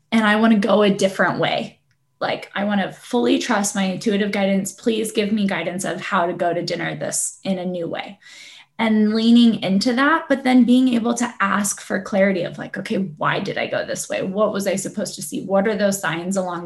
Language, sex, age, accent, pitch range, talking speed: English, female, 10-29, American, 185-225 Hz, 225 wpm